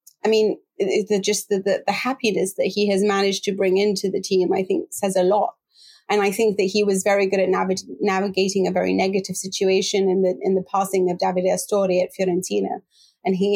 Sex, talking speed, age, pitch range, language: female, 215 wpm, 30-49, 190-210 Hz, English